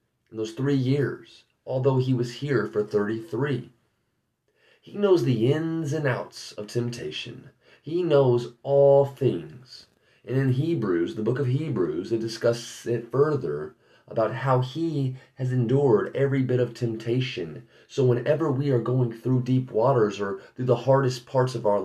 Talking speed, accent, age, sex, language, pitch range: 155 wpm, American, 30-49, male, English, 115-140 Hz